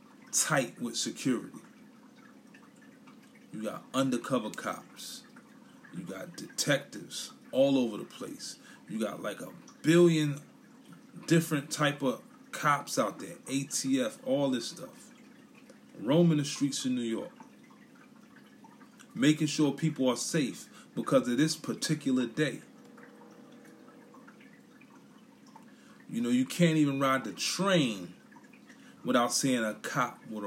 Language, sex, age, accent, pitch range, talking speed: English, male, 30-49, American, 150-245 Hz, 115 wpm